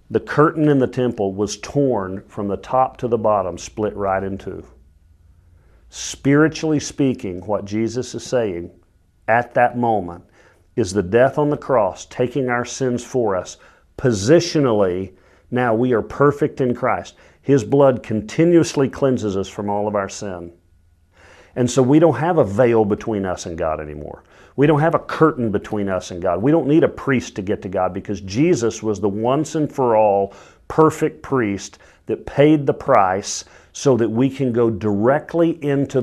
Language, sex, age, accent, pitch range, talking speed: English, male, 50-69, American, 100-150 Hz, 175 wpm